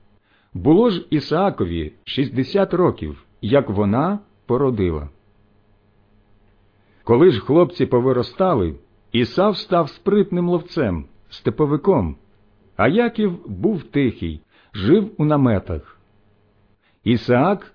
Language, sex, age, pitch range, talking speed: Ukrainian, male, 50-69, 100-145 Hz, 85 wpm